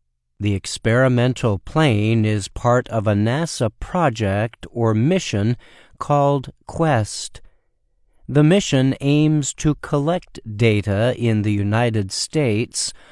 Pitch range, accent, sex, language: 105-135 Hz, American, male, Chinese